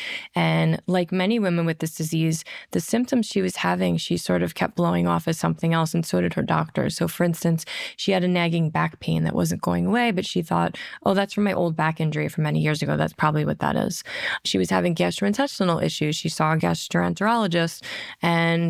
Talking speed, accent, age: 220 wpm, American, 20-39